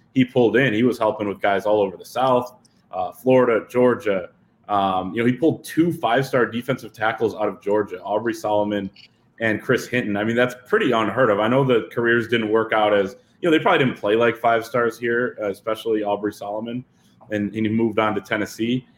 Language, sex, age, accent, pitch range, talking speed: English, male, 20-39, American, 110-135 Hz, 210 wpm